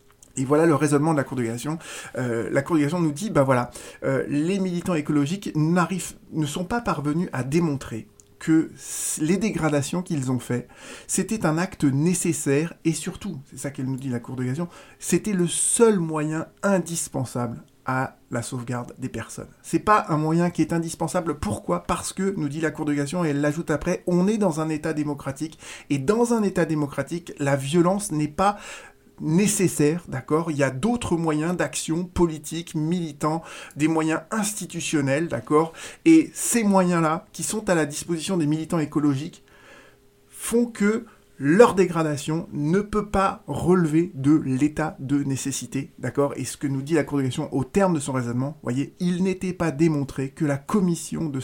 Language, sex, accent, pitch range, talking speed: French, male, French, 140-180 Hz, 180 wpm